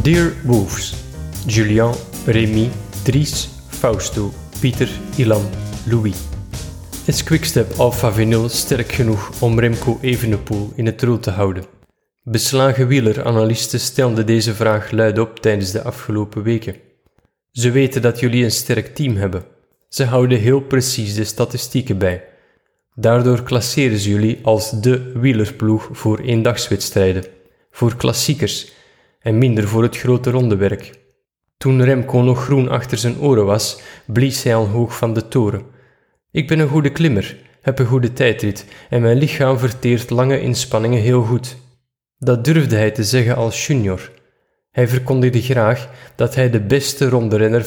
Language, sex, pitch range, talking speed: Dutch, male, 110-130 Hz, 140 wpm